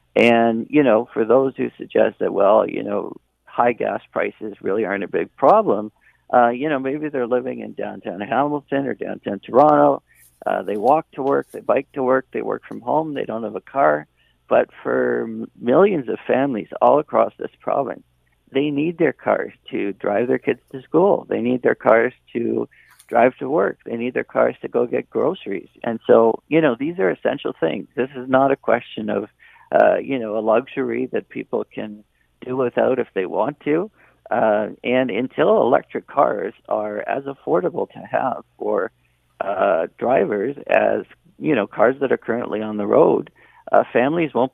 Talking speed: 185 wpm